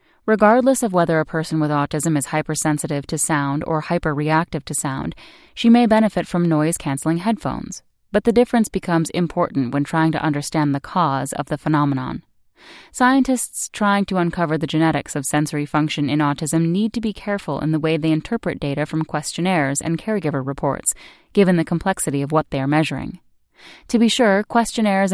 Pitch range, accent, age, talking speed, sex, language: 150-185 Hz, American, 10-29, 175 wpm, female, English